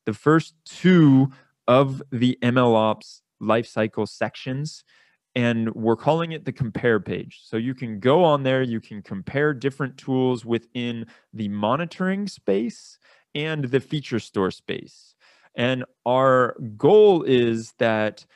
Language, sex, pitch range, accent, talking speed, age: English, male, 115-145 Hz, American, 130 wpm, 20-39